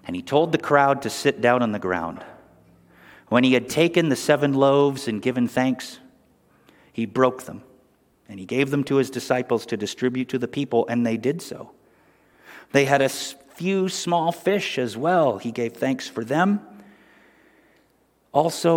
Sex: male